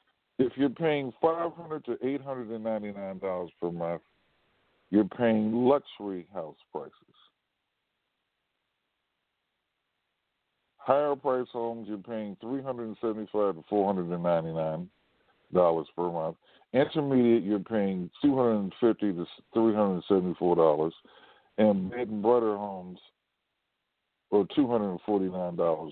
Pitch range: 95-120 Hz